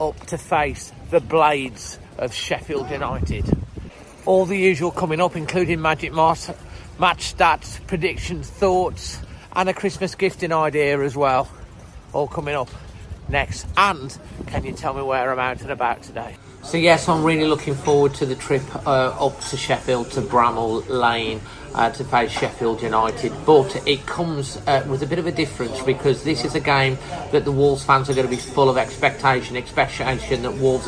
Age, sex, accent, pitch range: 40-59, male, British, 125-145 Hz